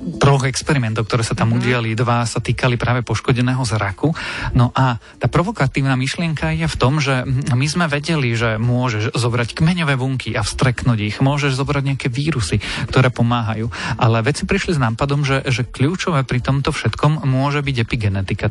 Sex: male